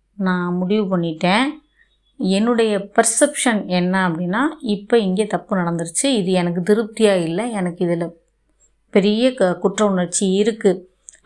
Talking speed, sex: 110 wpm, female